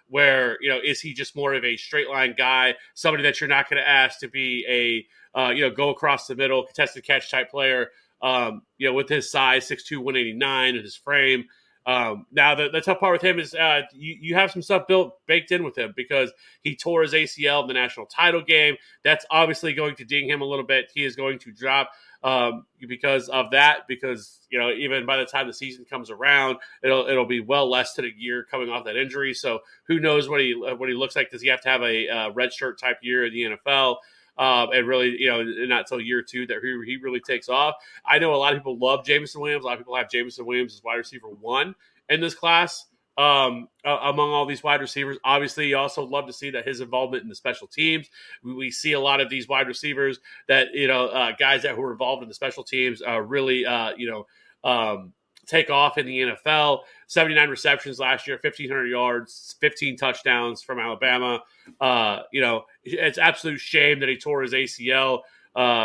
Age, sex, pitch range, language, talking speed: 30-49, male, 125-145 Hz, English, 230 wpm